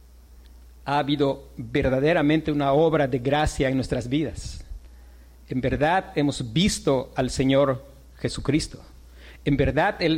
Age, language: 50-69, Spanish